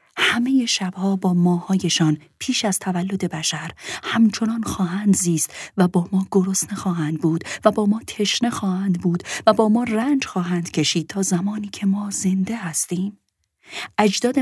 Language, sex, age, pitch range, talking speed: Persian, female, 30-49, 165-215 Hz, 150 wpm